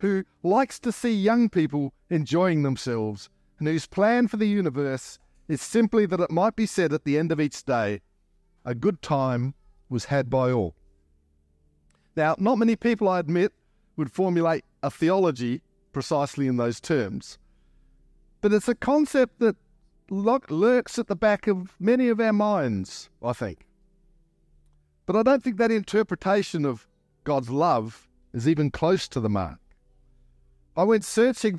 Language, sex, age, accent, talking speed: English, male, 50-69, Australian, 155 wpm